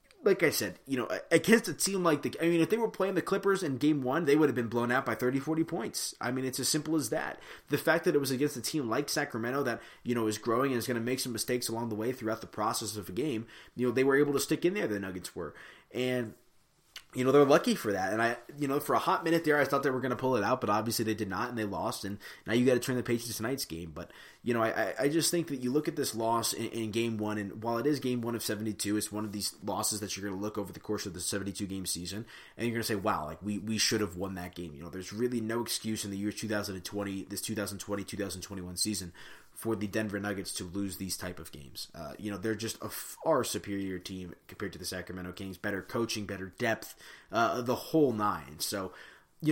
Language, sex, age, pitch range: English, male, 20-39, 105-130 Hz